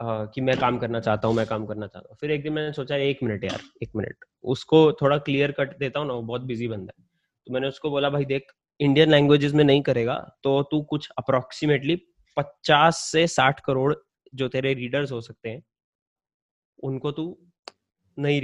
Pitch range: 120-145 Hz